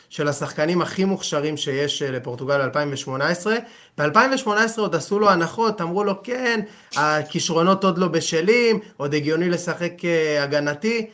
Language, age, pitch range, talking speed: Hebrew, 20-39, 135-165 Hz, 125 wpm